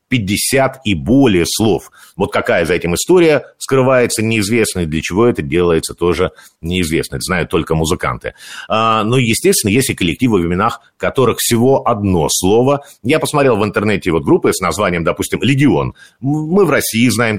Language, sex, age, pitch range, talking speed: Russian, male, 50-69, 95-135 Hz, 160 wpm